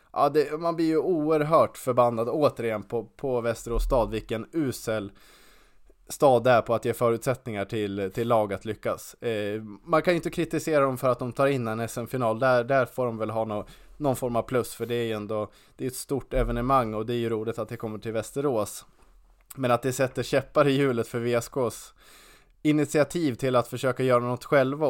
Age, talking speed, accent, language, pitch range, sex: 20-39, 205 wpm, Norwegian, Swedish, 110-135 Hz, male